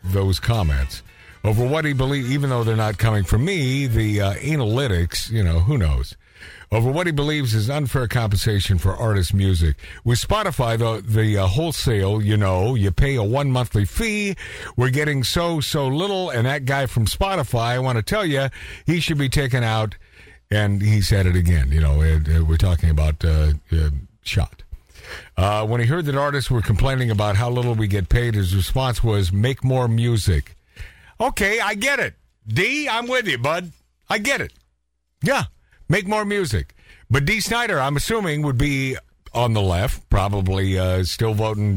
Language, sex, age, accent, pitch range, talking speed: English, male, 50-69, American, 95-140 Hz, 185 wpm